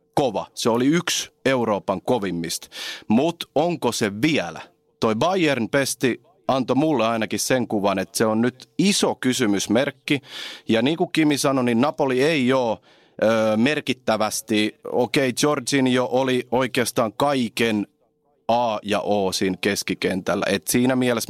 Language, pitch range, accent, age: Finnish, 105-125 Hz, native, 30-49